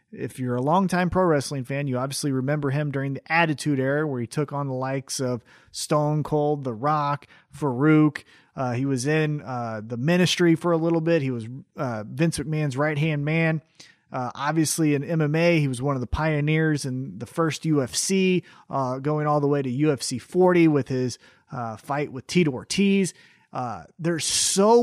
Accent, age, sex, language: American, 30-49, male, English